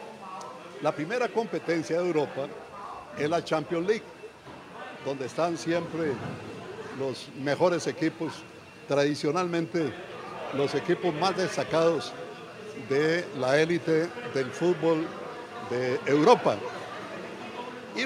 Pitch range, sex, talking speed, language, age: 155-200 Hz, male, 95 wpm, Spanish, 60-79